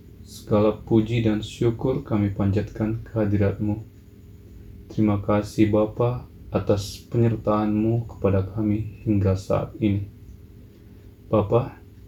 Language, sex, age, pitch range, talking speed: Indonesian, male, 20-39, 100-110 Hz, 90 wpm